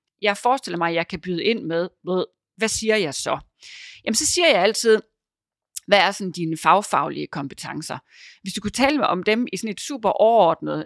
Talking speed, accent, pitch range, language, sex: 205 wpm, native, 175-245 Hz, Danish, female